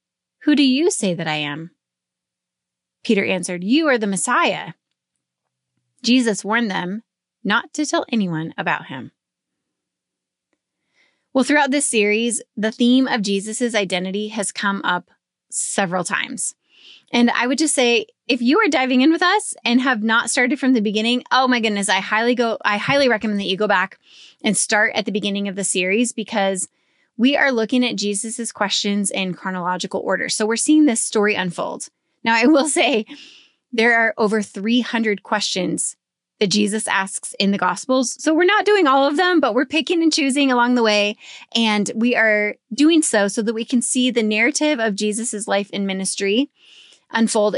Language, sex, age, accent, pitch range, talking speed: English, female, 20-39, American, 200-260 Hz, 175 wpm